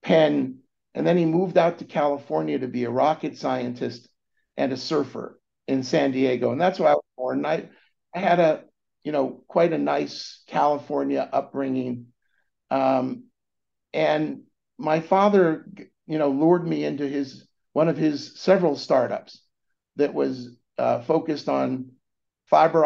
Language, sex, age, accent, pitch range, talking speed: English, male, 50-69, American, 135-190 Hz, 150 wpm